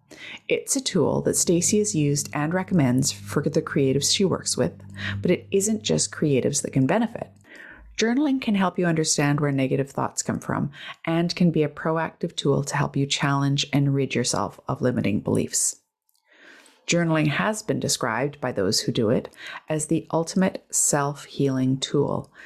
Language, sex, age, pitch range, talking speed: English, female, 30-49, 140-170 Hz, 170 wpm